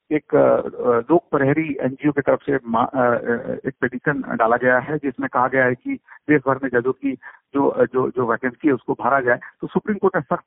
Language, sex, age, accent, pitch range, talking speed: Hindi, male, 50-69, native, 130-170 Hz, 110 wpm